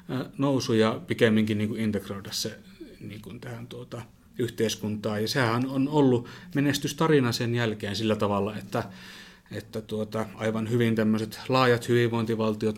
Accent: native